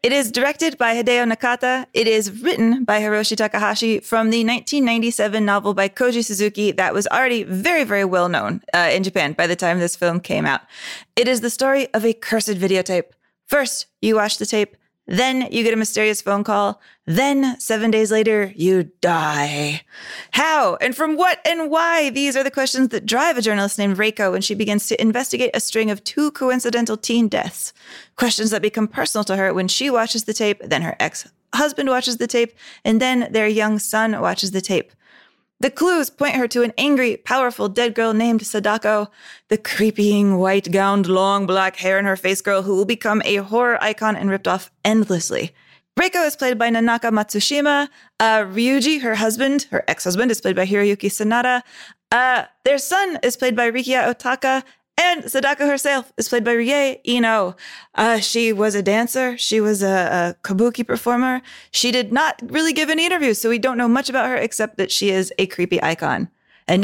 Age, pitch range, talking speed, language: 20-39, 200-255 Hz, 190 wpm, English